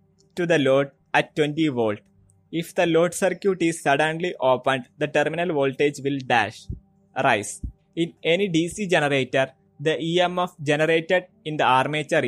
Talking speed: 140 wpm